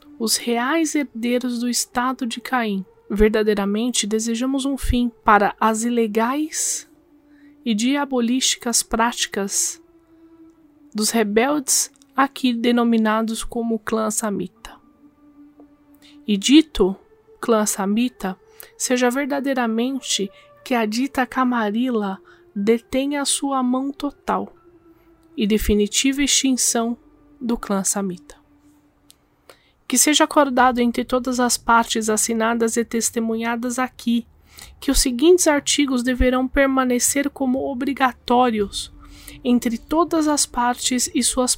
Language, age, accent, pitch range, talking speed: Portuguese, 20-39, Brazilian, 225-280 Hz, 100 wpm